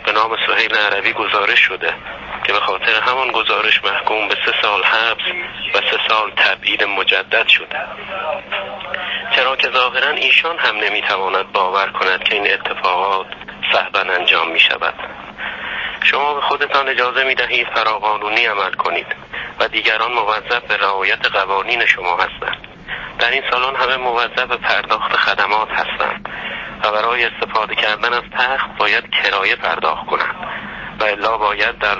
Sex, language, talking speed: male, Persian, 140 wpm